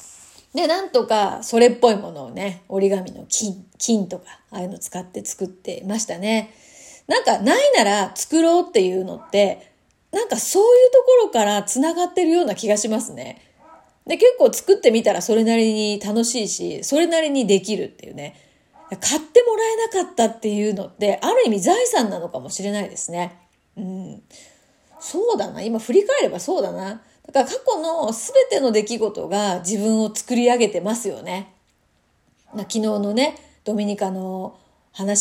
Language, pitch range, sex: Japanese, 200-265 Hz, female